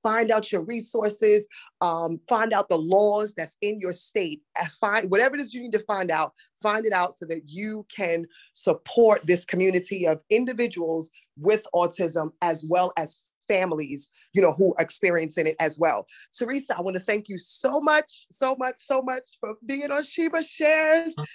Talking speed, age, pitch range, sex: 185 wpm, 20-39, 165-225 Hz, female